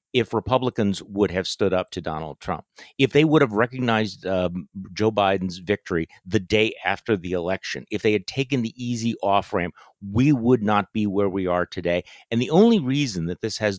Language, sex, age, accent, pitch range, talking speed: English, male, 50-69, American, 95-120 Hz, 200 wpm